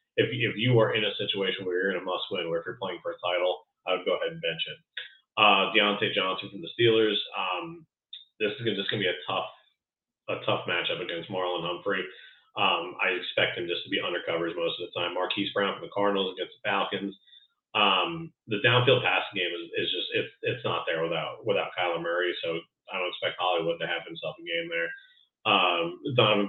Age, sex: 30-49, male